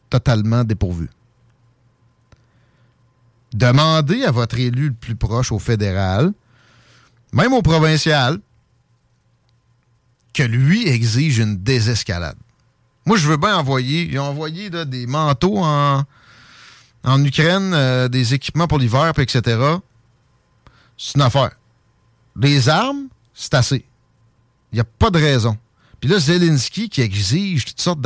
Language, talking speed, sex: French, 120 wpm, male